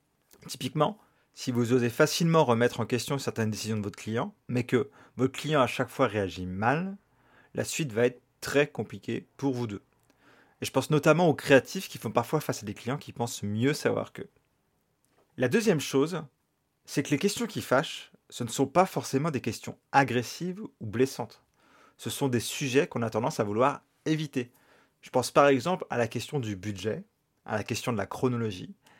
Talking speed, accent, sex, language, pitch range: 190 wpm, French, male, French, 120-155 Hz